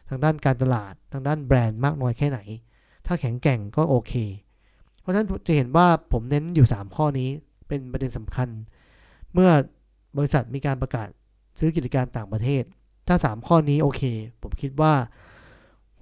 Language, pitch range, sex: Thai, 120-155 Hz, male